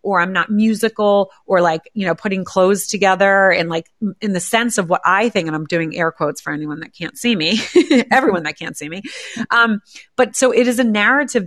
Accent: American